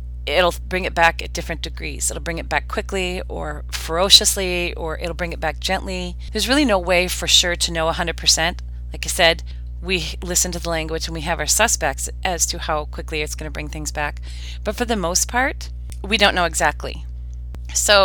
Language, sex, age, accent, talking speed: English, female, 30-49, American, 205 wpm